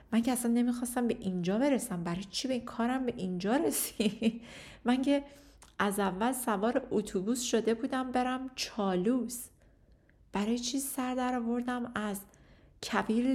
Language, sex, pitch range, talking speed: Persian, female, 200-240 Hz, 135 wpm